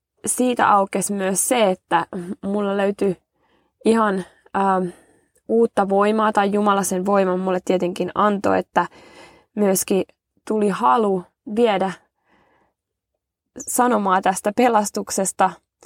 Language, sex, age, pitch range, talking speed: Finnish, female, 20-39, 185-210 Hz, 90 wpm